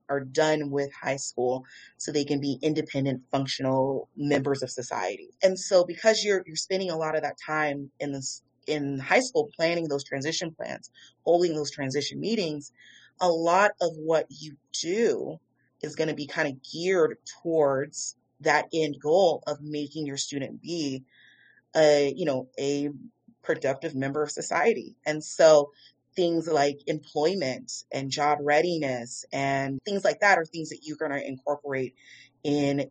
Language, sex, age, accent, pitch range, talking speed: English, female, 30-49, American, 135-170 Hz, 160 wpm